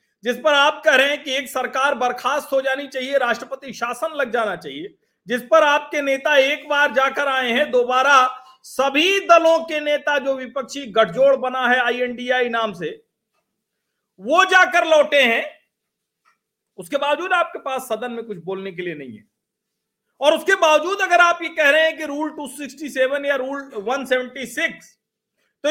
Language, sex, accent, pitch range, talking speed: Hindi, male, native, 245-320 Hz, 170 wpm